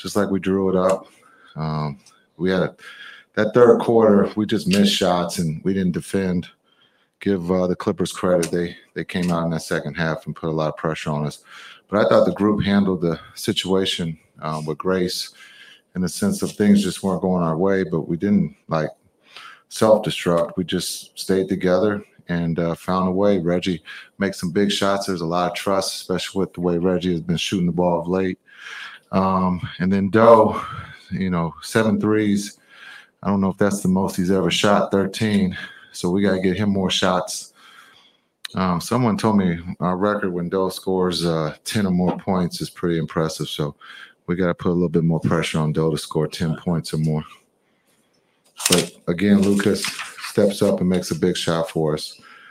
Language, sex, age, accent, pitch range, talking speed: English, male, 30-49, American, 85-100 Hz, 200 wpm